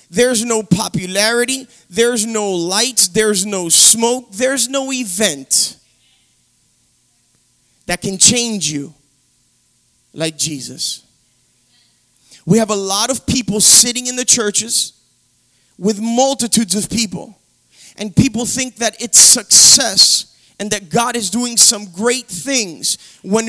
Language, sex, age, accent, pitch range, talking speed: English, male, 30-49, American, 185-255 Hz, 120 wpm